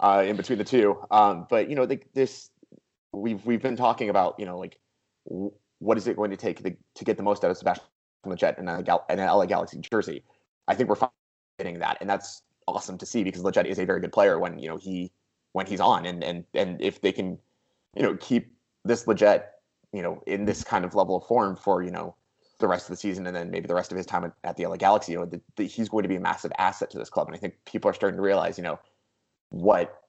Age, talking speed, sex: 20-39, 260 wpm, male